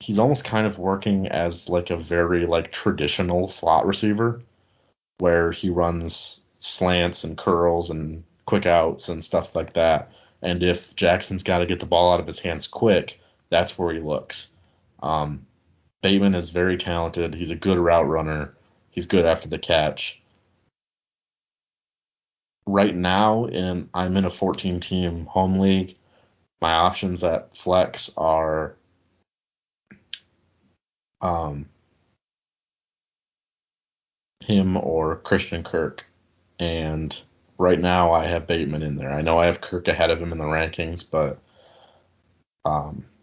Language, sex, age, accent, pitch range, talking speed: English, male, 30-49, American, 85-95 Hz, 135 wpm